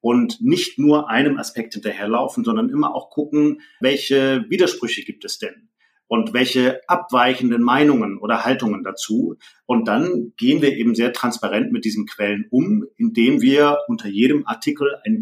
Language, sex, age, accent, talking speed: German, male, 40-59, German, 155 wpm